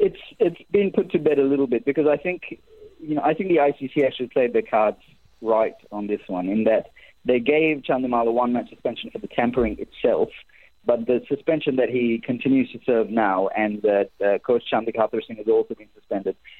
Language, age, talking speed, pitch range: English, 20-39, 205 wpm, 110-130 Hz